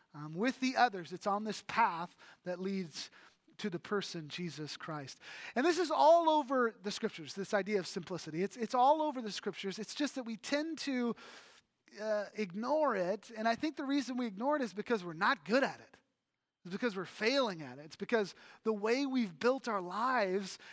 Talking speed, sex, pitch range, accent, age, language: 205 wpm, male, 190-255 Hz, American, 30-49, English